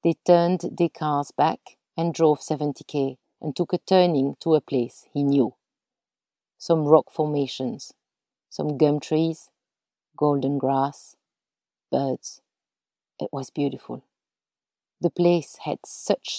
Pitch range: 140-170 Hz